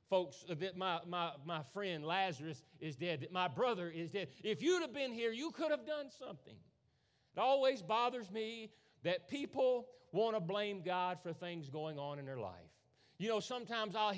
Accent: American